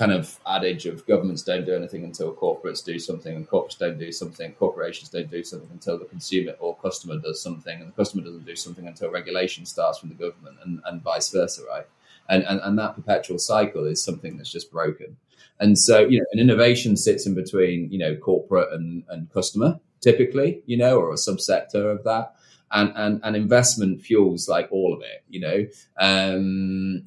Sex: male